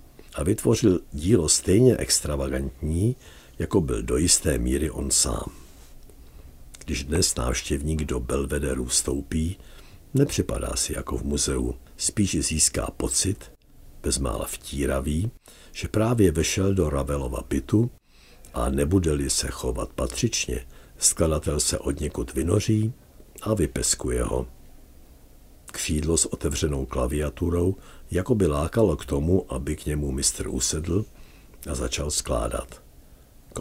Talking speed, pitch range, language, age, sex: 115 wpm, 65-85 Hz, Czech, 60-79, male